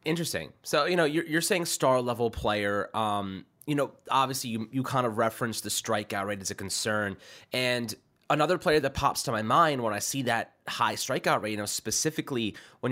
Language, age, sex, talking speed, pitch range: English, 20-39, male, 210 wpm, 110-140 Hz